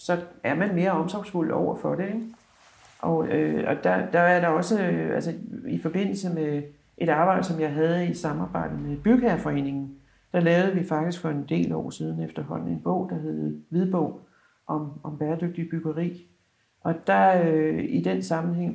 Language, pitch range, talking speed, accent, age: Danish, 145-185 Hz, 165 wpm, native, 60-79